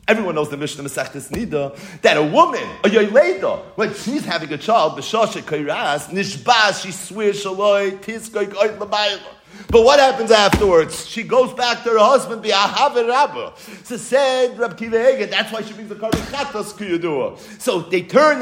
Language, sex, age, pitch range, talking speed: English, male, 50-69, 185-260 Hz, 130 wpm